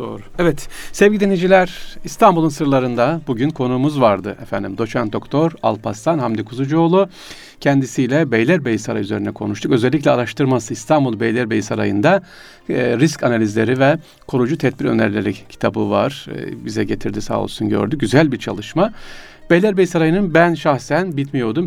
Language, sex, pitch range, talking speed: Turkish, male, 110-150 Hz, 135 wpm